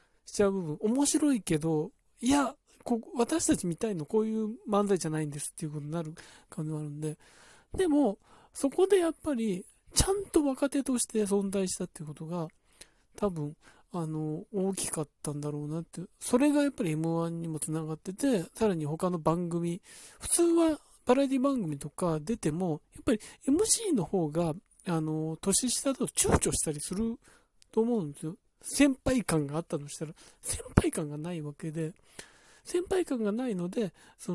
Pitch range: 160-240 Hz